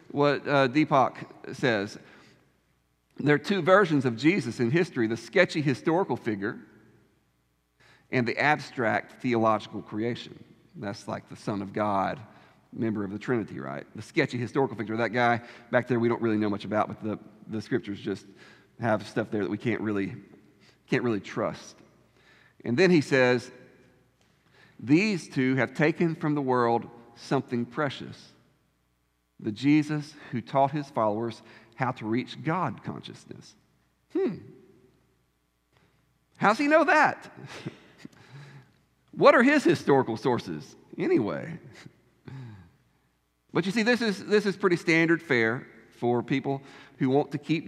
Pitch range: 110-140 Hz